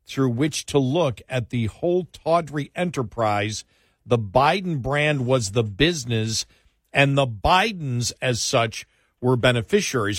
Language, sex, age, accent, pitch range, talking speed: English, male, 50-69, American, 115-150 Hz, 130 wpm